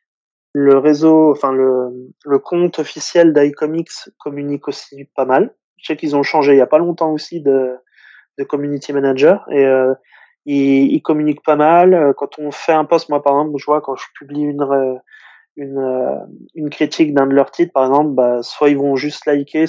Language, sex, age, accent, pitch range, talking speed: French, male, 20-39, French, 140-160 Hz, 190 wpm